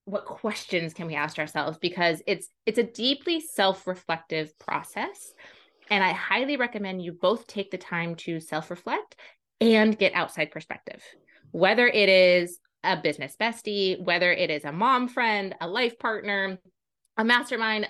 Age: 20-39